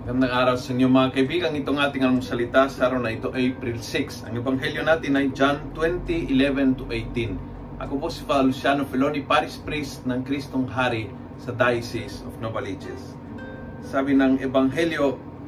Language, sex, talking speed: Filipino, male, 160 wpm